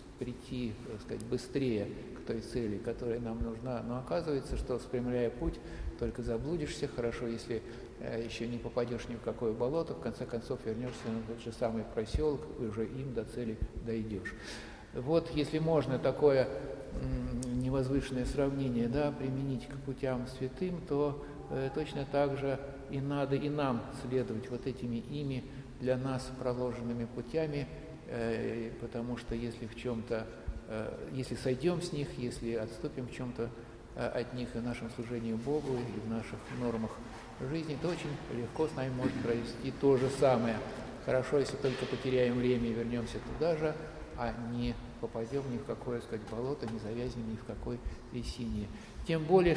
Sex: male